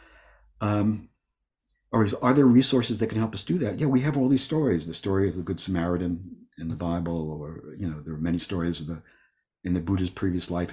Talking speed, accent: 225 wpm, American